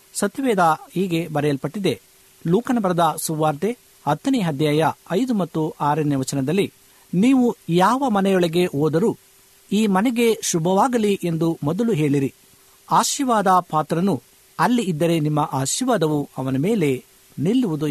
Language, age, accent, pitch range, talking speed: Kannada, 50-69, native, 150-205 Hz, 105 wpm